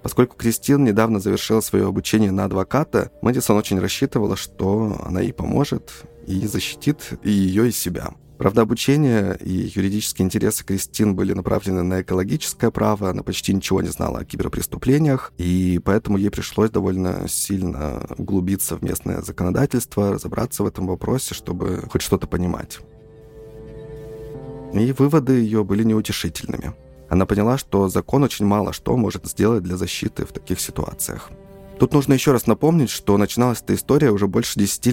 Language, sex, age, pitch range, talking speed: Russian, male, 20-39, 90-115 Hz, 150 wpm